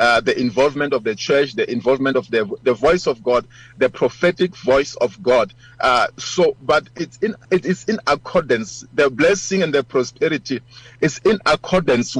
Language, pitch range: English, 130-180 Hz